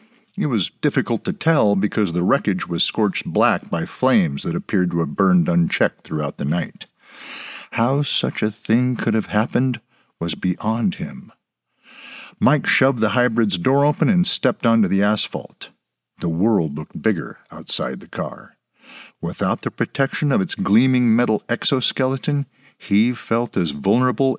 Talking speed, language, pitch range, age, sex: 155 wpm, English, 110-180 Hz, 50-69, male